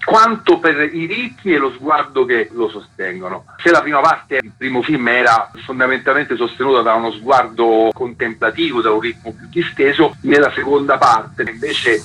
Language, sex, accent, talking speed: Italian, male, native, 165 wpm